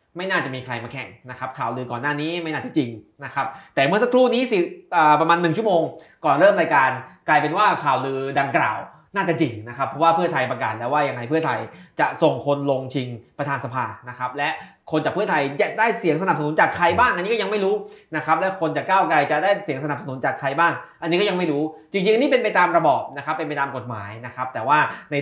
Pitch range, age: 130-170 Hz, 20-39